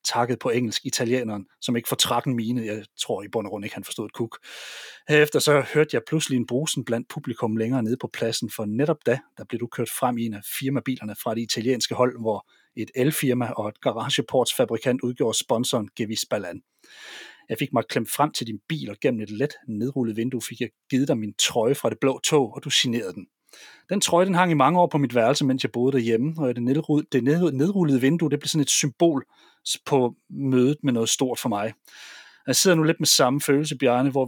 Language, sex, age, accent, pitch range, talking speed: Danish, male, 30-49, native, 120-145 Hz, 215 wpm